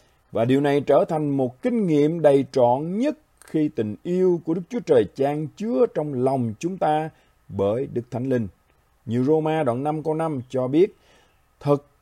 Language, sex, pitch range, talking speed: Vietnamese, male, 125-190 Hz, 185 wpm